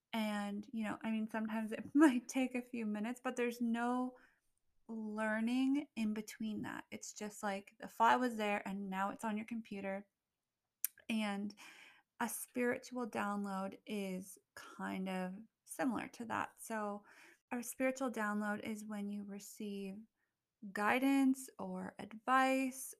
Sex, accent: female, American